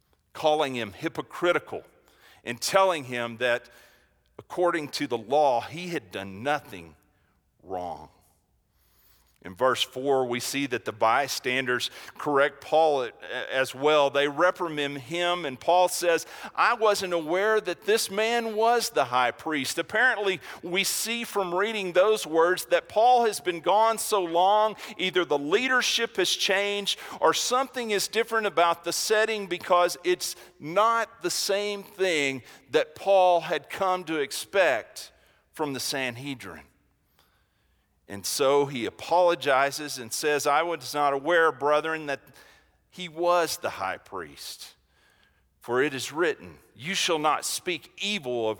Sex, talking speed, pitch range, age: male, 140 wpm, 135-185 Hz, 50-69